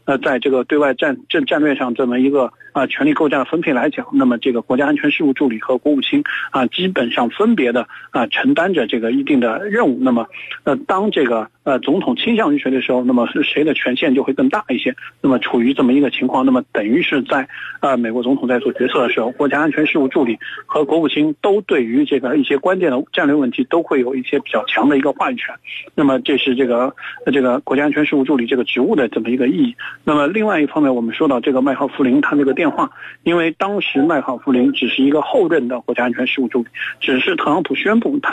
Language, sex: Chinese, male